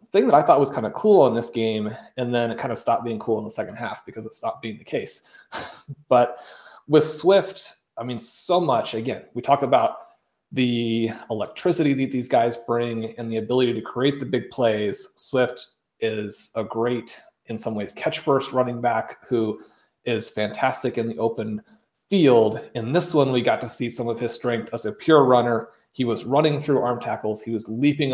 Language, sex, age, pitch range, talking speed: English, male, 30-49, 115-135 Hz, 205 wpm